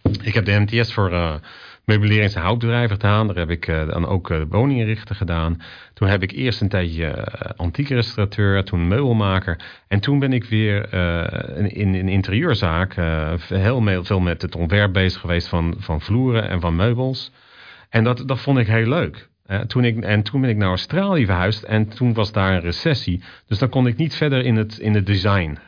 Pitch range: 90-115 Hz